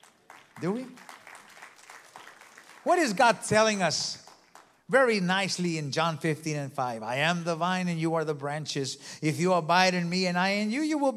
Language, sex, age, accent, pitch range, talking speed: English, male, 50-69, American, 170-220 Hz, 185 wpm